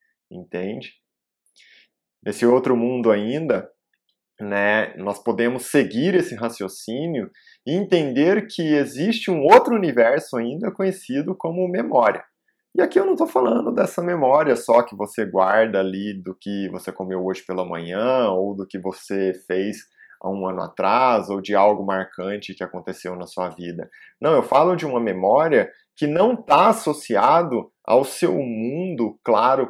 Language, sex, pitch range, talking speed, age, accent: Portuguese, male, 95-150 Hz, 150 wpm, 20-39, Brazilian